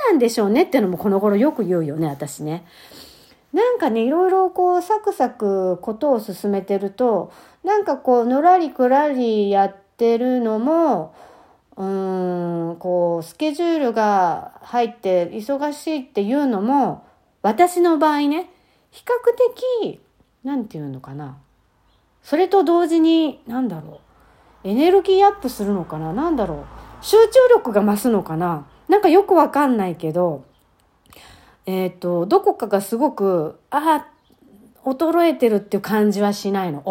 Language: Japanese